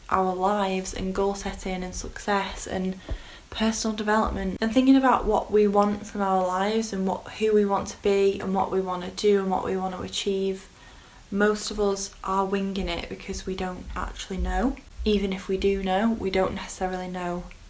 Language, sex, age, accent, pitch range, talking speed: English, female, 10-29, British, 185-205 Hz, 195 wpm